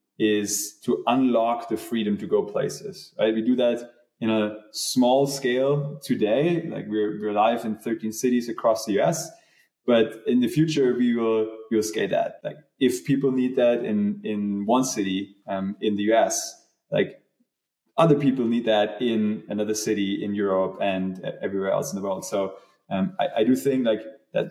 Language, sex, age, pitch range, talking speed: English, male, 20-39, 105-135 Hz, 180 wpm